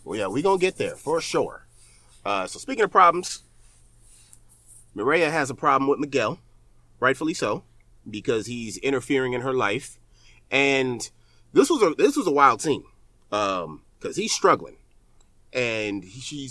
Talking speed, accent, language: 160 wpm, American, English